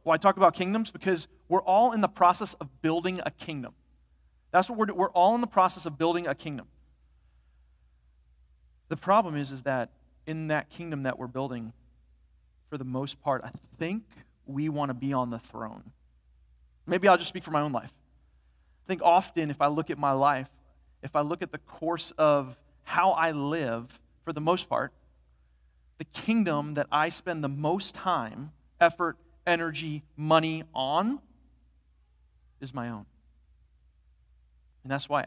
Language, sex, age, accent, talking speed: English, male, 30-49, American, 170 wpm